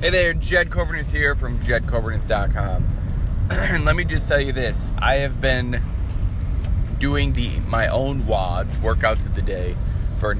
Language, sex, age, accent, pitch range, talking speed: English, male, 20-39, American, 90-105 Hz, 155 wpm